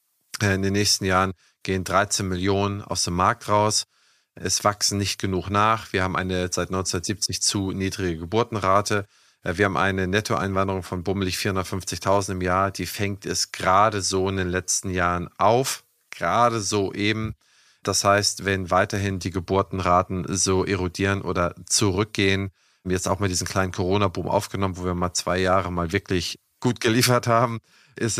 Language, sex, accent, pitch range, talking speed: German, male, German, 95-110 Hz, 160 wpm